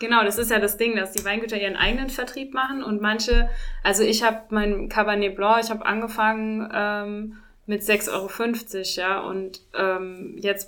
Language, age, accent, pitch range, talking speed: German, 20-39, German, 195-230 Hz, 180 wpm